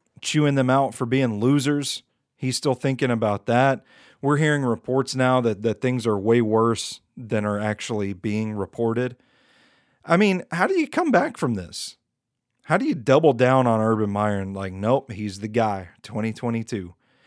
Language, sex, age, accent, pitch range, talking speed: English, male, 40-59, American, 105-130 Hz, 175 wpm